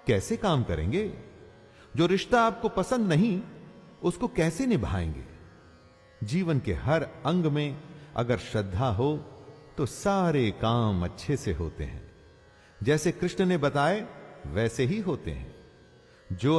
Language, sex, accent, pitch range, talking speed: Hindi, male, native, 110-180 Hz, 125 wpm